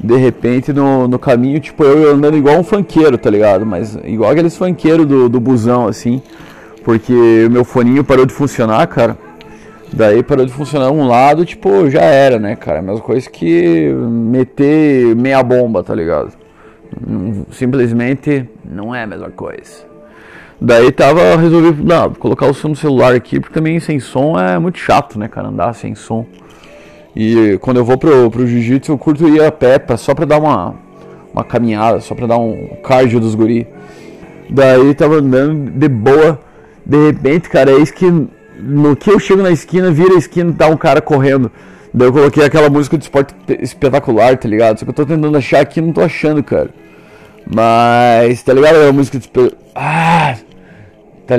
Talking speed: 180 wpm